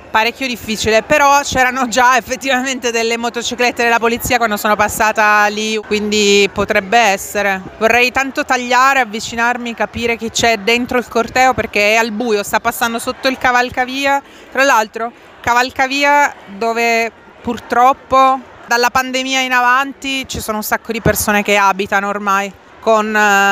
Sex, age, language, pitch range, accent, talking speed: female, 30-49, Italian, 215-250 Hz, native, 140 wpm